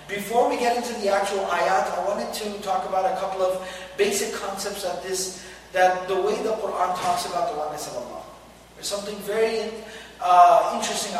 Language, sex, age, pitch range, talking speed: Malay, male, 30-49, 180-205 Hz, 180 wpm